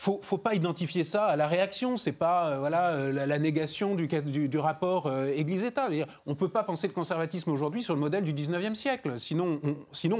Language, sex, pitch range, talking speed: French, male, 160-220 Hz, 245 wpm